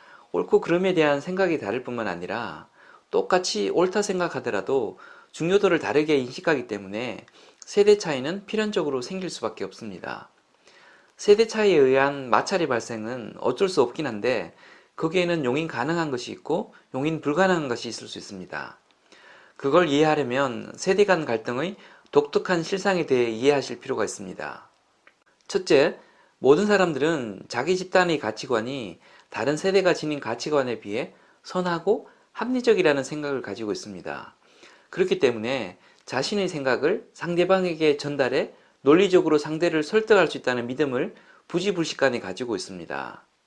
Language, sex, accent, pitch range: Korean, male, native, 145-205 Hz